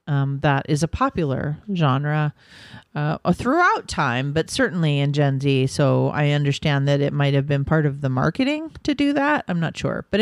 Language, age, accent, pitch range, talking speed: English, 40-59, American, 145-195 Hz, 195 wpm